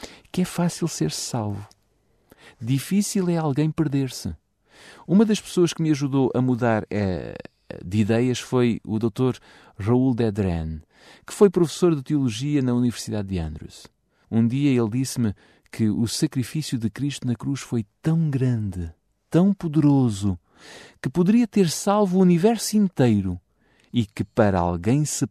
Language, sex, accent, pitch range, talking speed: Portuguese, male, Portuguese, 105-150 Hz, 145 wpm